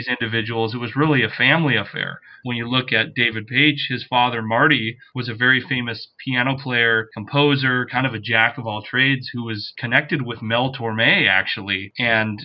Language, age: English, 30-49